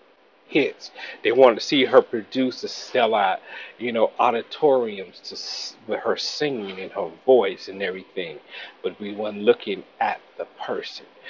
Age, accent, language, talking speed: 40-59, American, English, 145 wpm